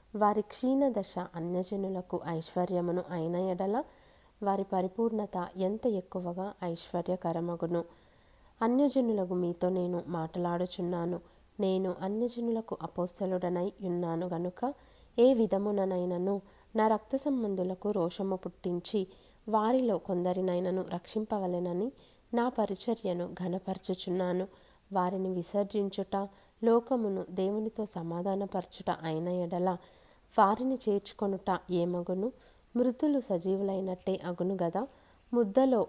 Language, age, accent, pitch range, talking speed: Telugu, 30-49, native, 180-210 Hz, 80 wpm